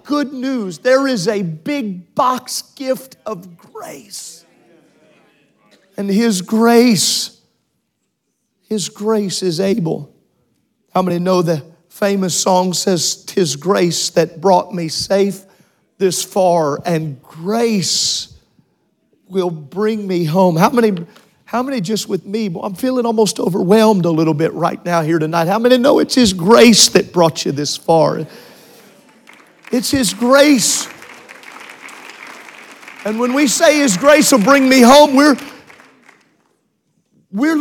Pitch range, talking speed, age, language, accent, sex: 185-230 Hz, 130 wpm, 40-59, English, American, male